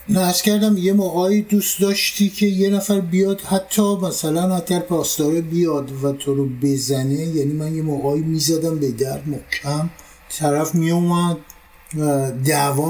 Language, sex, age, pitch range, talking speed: Persian, male, 50-69, 140-170 Hz, 145 wpm